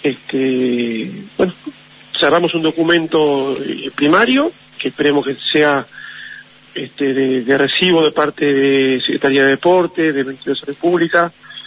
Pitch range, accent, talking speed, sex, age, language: 140-170 Hz, Argentinian, 120 wpm, male, 40-59, Spanish